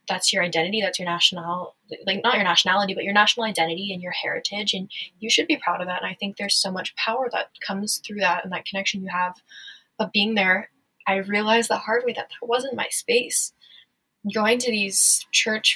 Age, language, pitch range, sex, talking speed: 10-29, English, 195-230 Hz, female, 215 wpm